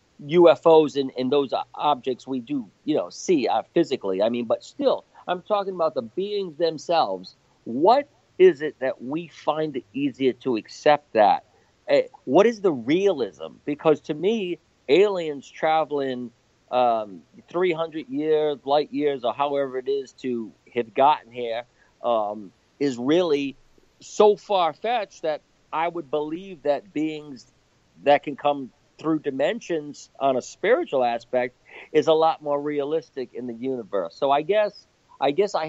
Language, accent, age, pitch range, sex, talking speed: English, American, 50-69, 130-170 Hz, male, 150 wpm